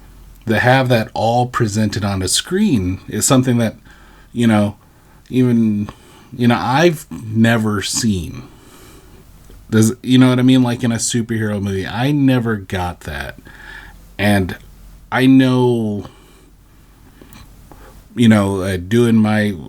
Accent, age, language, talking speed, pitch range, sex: American, 30-49, English, 125 wpm, 95-120 Hz, male